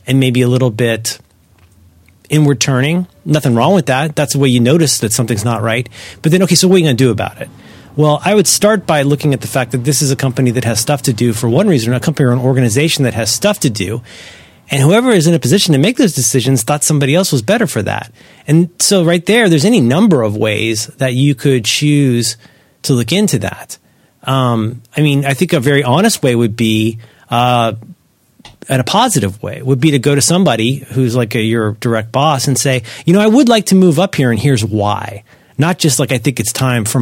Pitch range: 120-160 Hz